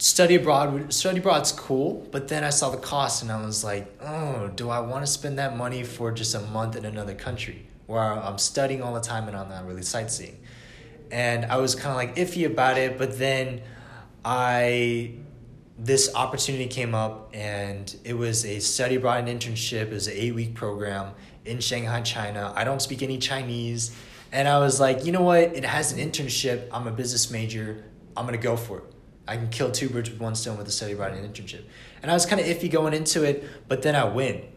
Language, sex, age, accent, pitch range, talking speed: English, male, 20-39, American, 110-135 Hz, 215 wpm